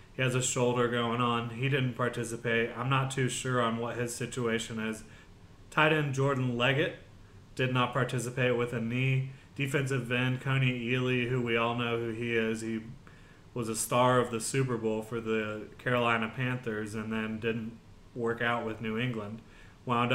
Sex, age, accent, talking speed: male, 20-39, American, 180 wpm